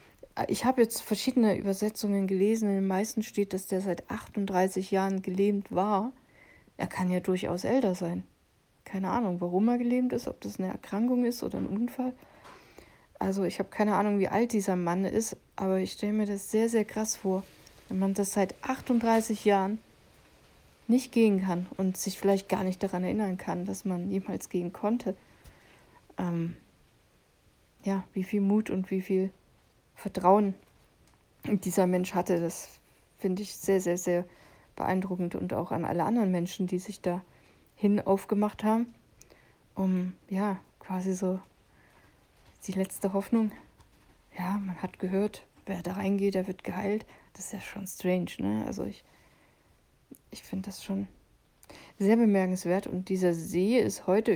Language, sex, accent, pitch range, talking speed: German, female, German, 185-210 Hz, 160 wpm